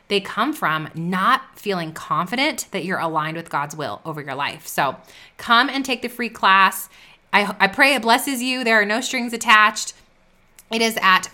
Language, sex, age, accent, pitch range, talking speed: English, female, 20-39, American, 175-225 Hz, 190 wpm